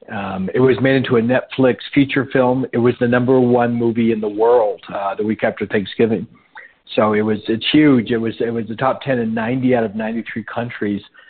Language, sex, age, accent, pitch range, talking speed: English, male, 50-69, American, 115-140 Hz, 225 wpm